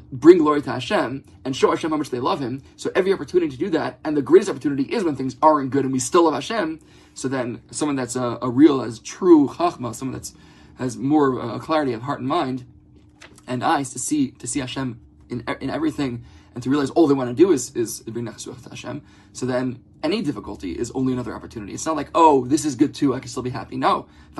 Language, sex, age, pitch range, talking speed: English, male, 20-39, 125-155 Hz, 240 wpm